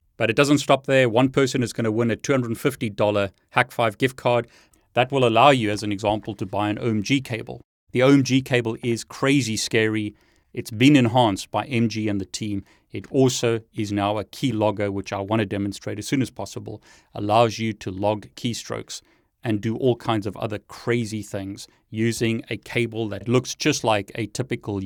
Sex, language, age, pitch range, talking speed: male, English, 30-49, 105-130 Hz, 190 wpm